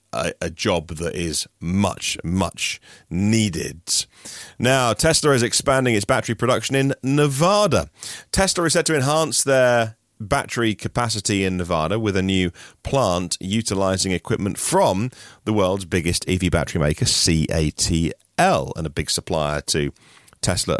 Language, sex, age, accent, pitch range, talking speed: English, male, 30-49, British, 85-120 Hz, 135 wpm